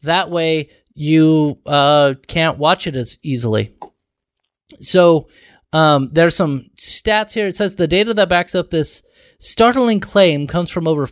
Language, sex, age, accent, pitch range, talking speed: English, male, 20-39, American, 145-190 Hz, 150 wpm